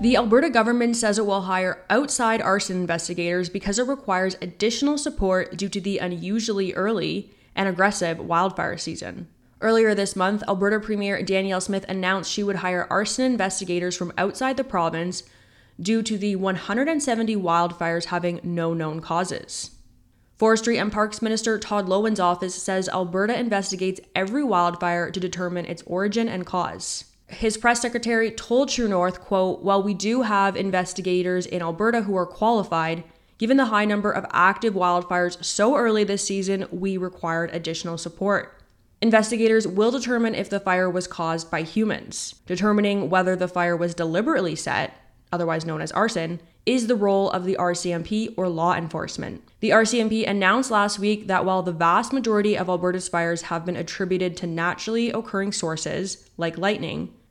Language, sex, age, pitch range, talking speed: English, female, 20-39, 175-215 Hz, 160 wpm